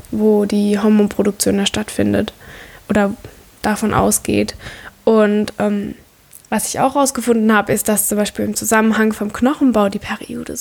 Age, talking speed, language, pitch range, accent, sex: 10-29, 140 wpm, German, 205-225 Hz, German, female